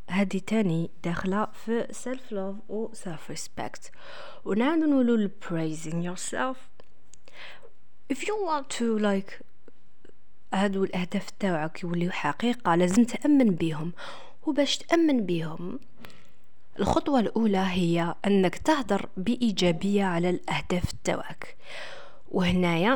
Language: English